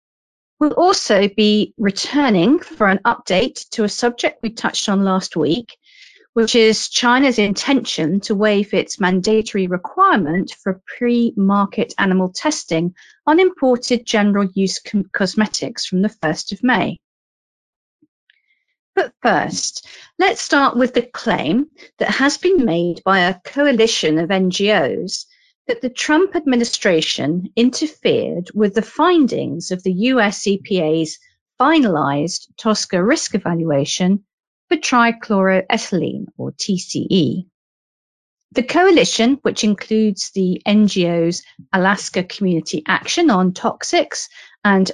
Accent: British